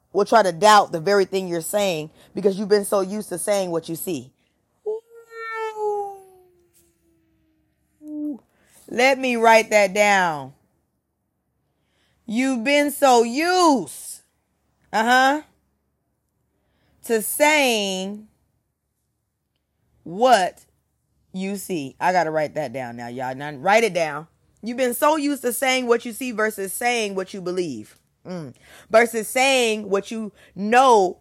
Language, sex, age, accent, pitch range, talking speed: English, female, 20-39, American, 180-270 Hz, 130 wpm